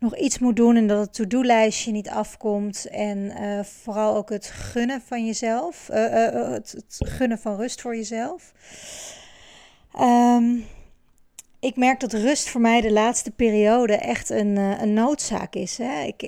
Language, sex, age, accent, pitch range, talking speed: Dutch, female, 40-59, Dutch, 205-245 Hz, 165 wpm